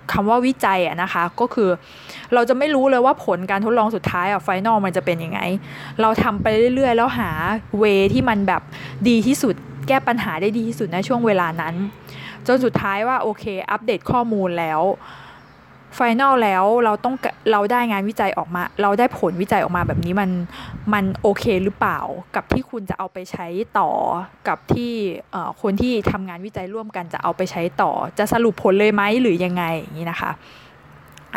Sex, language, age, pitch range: female, Thai, 20-39, 190-240 Hz